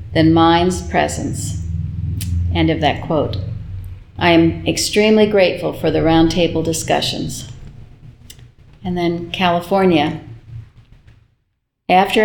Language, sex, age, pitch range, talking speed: English, female, 50-69, 150-185 Hz, 95 wpm